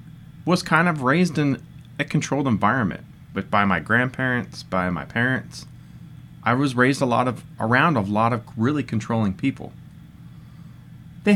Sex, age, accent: male, 30-49, American